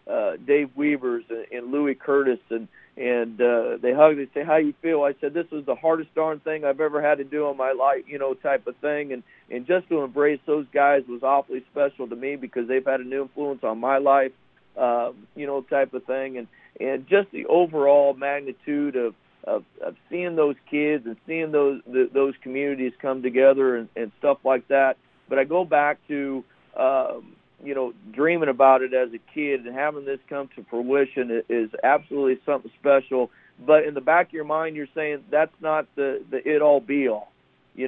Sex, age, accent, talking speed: male, 50-69, American, 205 wpm